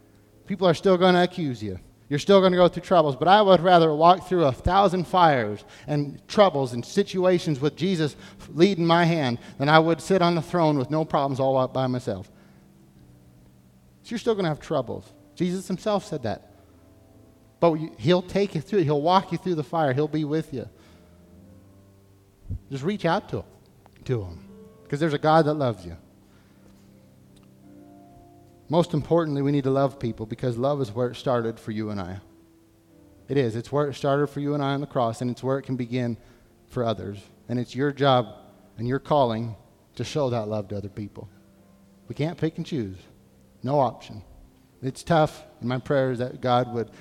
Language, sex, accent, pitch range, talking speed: English, male, American, 105-155 Hz, 195 wpm